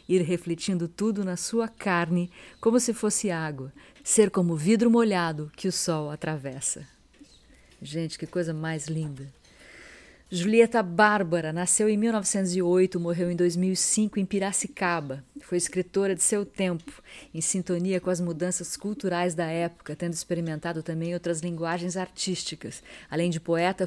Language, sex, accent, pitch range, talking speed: Portuguese, female, Brazilian, 170-195 Hz, 140 wpm